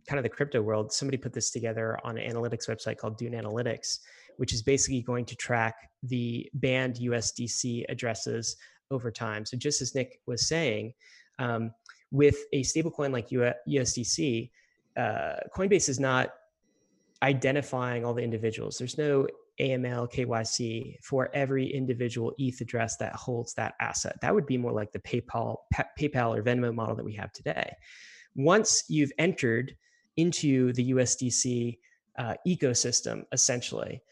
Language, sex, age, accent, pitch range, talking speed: English, male, 20-39, American, 115-140 Hz, 155 wpm